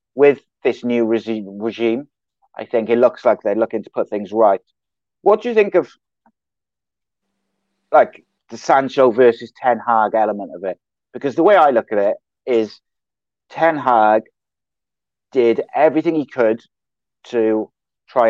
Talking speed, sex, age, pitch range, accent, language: 150 wpm, male, 30-49, 110-135 Hz, British, English